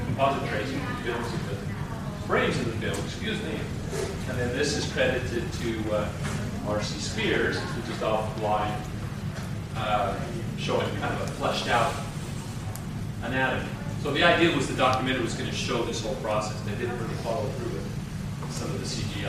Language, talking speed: English, 175 wpm